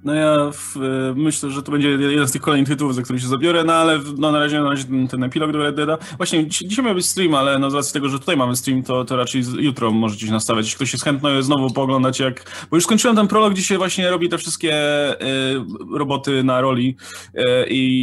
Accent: native